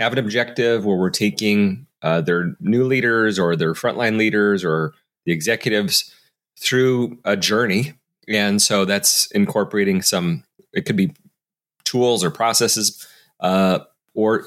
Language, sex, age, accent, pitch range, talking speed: English, male, 30-49, American, 100-130 Hz, 135 wpm